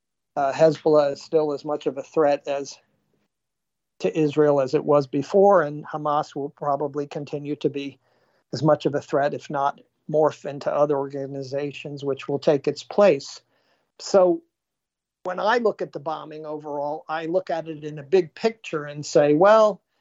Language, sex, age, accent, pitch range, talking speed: English, male, 50-69, American, 145-165 Hz, 170 wpm